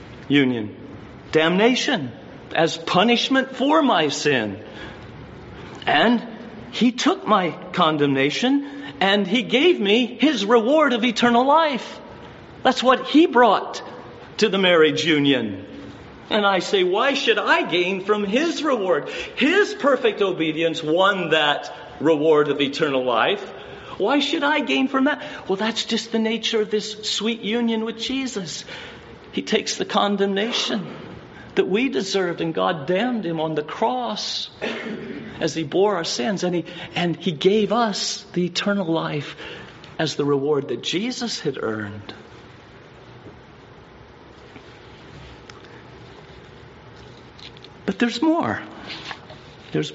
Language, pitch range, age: English, 155-240 Hz, 50-69